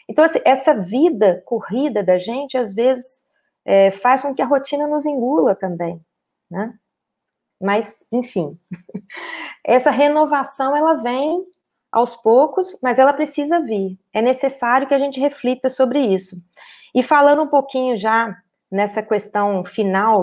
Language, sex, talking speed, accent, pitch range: Portuguese, female, 135 wpm, Brazilian, 210-300 Hz